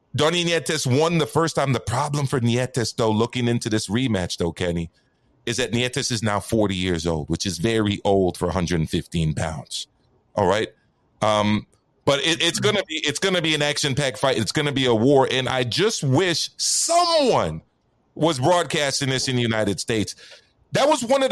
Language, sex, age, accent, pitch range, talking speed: English, male, 30-49, American, 115-170 Hz, 200 wpm